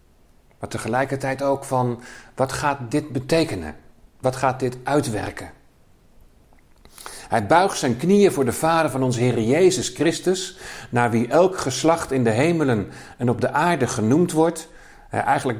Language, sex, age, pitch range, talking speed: Dutch, male, 50-69, 110-155 Hz, 145 wpm